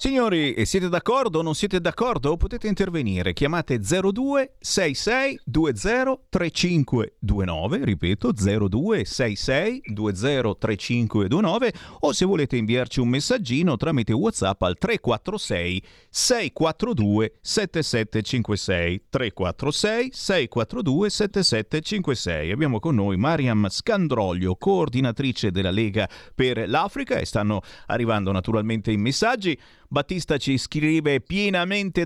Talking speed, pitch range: 80 wpm, 110-160 Hz